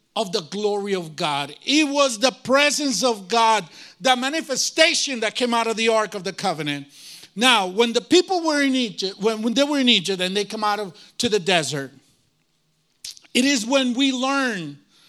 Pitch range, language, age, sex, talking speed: 205-290 Hz, English, 50-69, male, 185 wpm